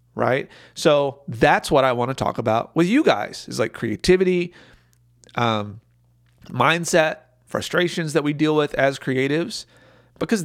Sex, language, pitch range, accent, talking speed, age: male, English, 115-140 Hz, American, 145 wpm, 40-59